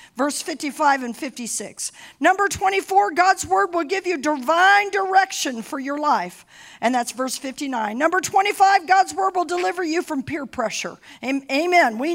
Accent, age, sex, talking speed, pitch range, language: American, 50-69, female, 160 wpm, 250-365 Hz, English